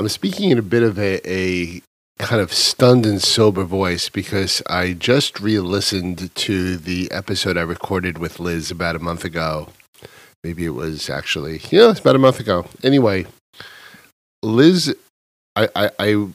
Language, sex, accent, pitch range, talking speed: English, male, American, 90-110 Hz, 170 wpm